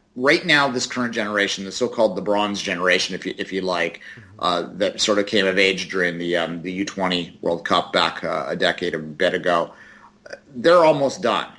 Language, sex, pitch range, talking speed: English, male, 95-115 Hz, 200 wpm